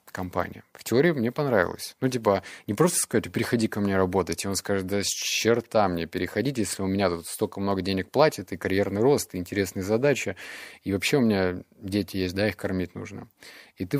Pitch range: 95-125 Hz